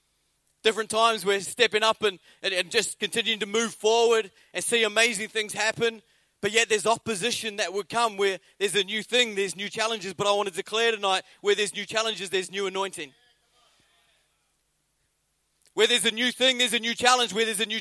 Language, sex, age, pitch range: English, male, 30-49, 165-215 Hz